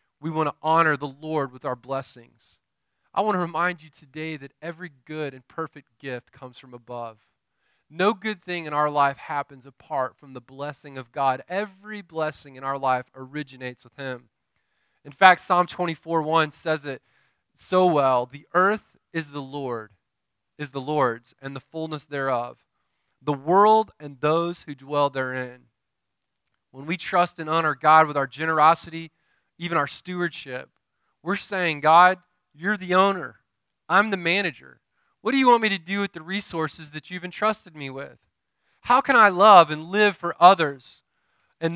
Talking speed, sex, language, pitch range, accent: 170 wpm, male, English, 140-195 Hz, American